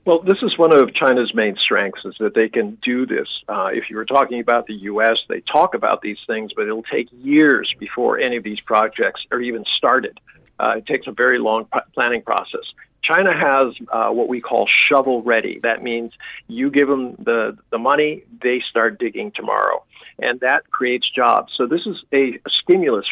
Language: English